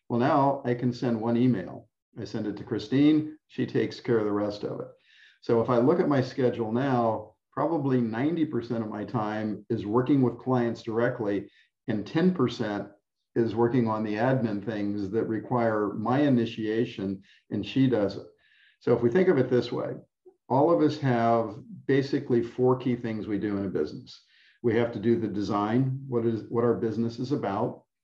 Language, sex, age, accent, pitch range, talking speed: English, male, 50-69, American, 110-130 Hz, 185 wpm